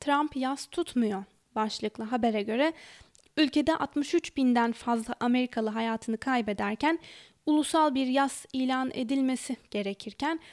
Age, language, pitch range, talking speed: 10-29, Turkish, 225-290 Hz, 105 wpm